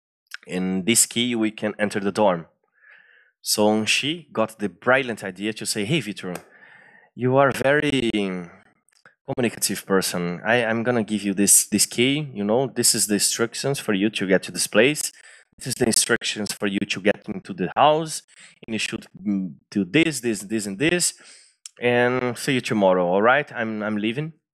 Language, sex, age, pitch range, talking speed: English, male, 20-39, 100-125 Hz, 185 wpm